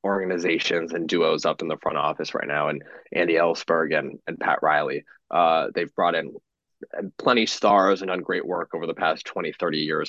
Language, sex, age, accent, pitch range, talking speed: English, male, 20-39, American, 115-160 Hz, 195 wpm